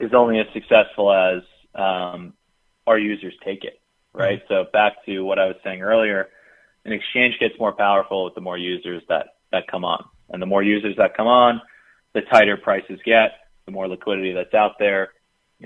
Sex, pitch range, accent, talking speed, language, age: male, 95-105 Hz, American, 190 wpm, English, 30-49